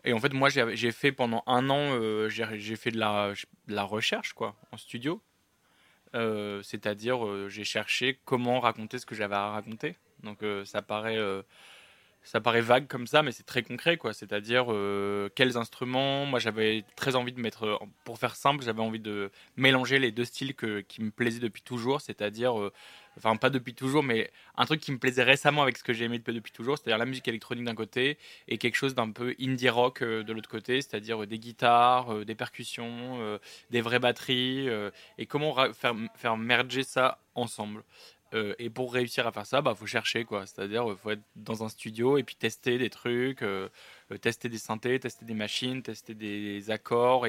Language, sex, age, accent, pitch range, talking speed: French, male, 20-39, French, 110-125 Hz, 210 wpm